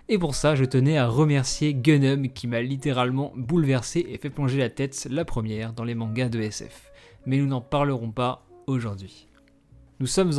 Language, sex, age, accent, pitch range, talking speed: French, male, 20-39, French, 125-150 Hz, 185 wpm